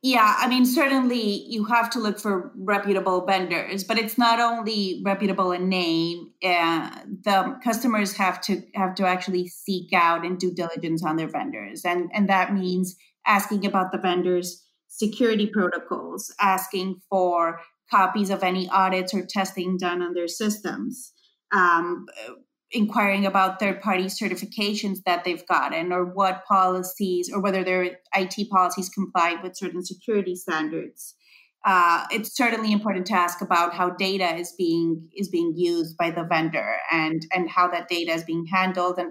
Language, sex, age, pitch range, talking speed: English, female, 30-49, 175-205 Hz, 160 wpm